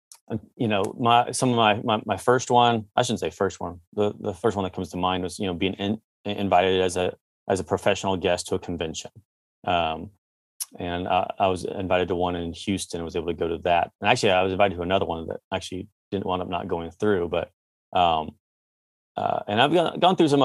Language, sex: English, male